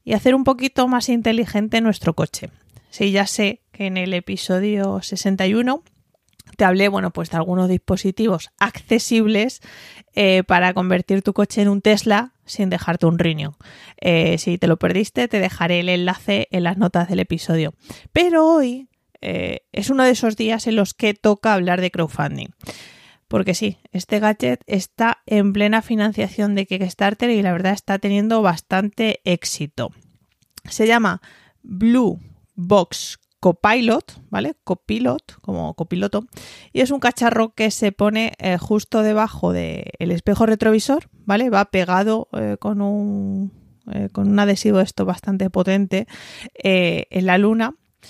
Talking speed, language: 140 wpm, Spanish